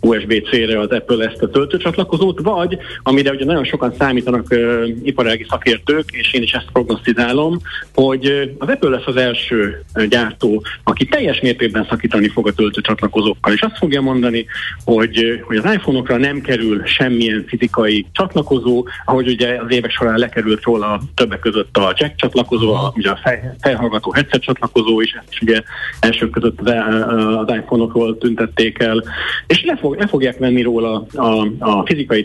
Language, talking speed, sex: Hungarian, 155 wpm, male